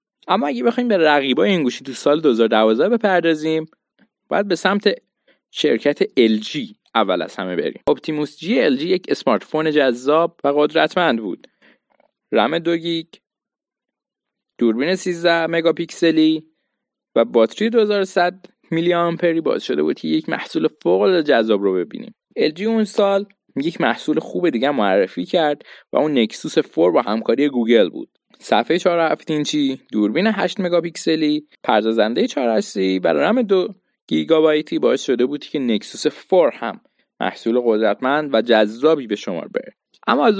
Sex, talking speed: male, 145 wpm